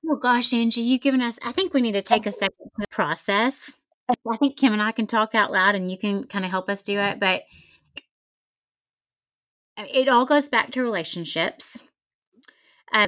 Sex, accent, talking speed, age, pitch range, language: female, American, 195 wpm, 30-49, 190-235 Hz, English